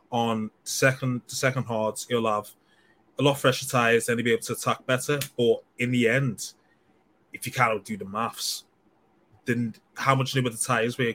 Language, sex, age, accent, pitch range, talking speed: English, male, 20-39, British, 115-150 Hz, 200 wpm